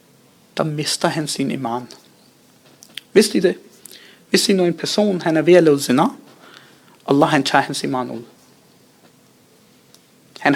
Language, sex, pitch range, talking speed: Danish, male, 155-210 Hz, 135 wpm